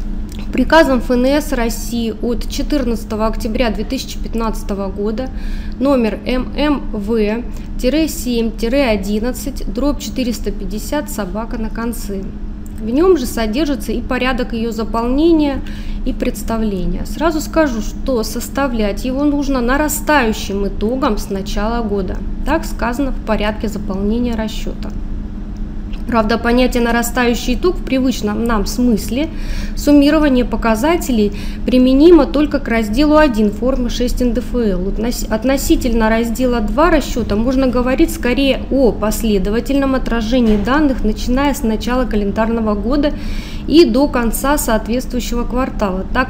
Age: 20-39